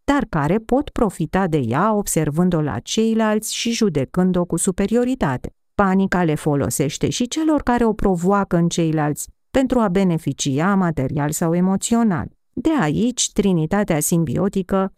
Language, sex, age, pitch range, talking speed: Romanian, female, 40-59, 165-230 Hz, 130 wpm